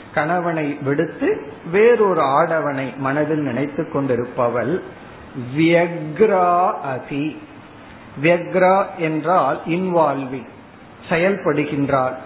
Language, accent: Tamil, native